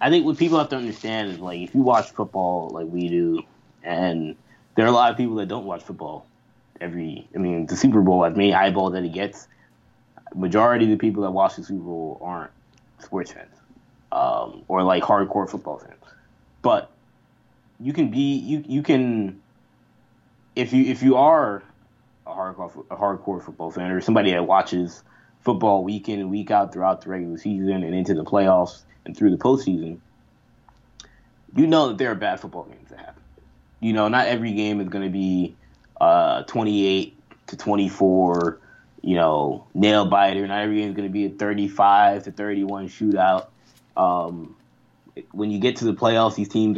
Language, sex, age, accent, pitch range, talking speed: English, male, 20-39, American, 95-110 Hz, 185 wpm